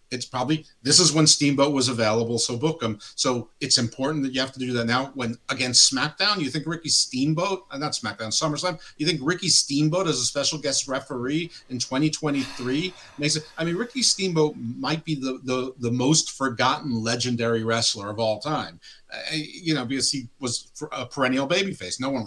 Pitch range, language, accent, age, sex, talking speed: 125-155 Hz, English, American, 50-69, male, 190 wpm